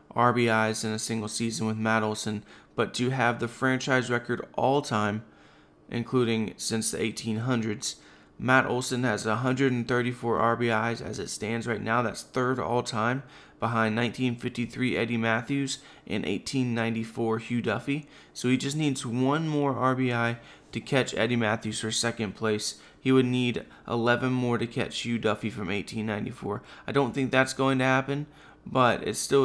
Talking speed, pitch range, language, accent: 155 wpm, 110-125 Hz, English, American